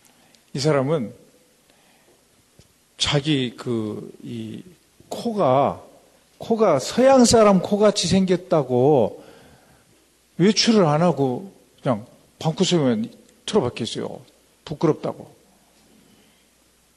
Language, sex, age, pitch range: Korean, male, 50-69, 155-230 Hz